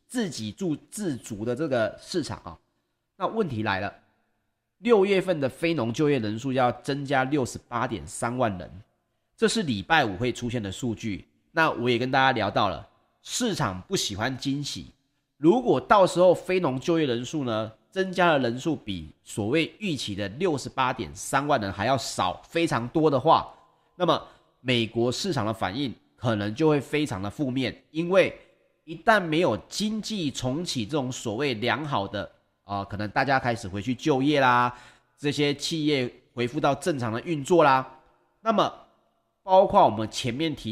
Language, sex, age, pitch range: Chinese, male, 30-49, 115-160 Hz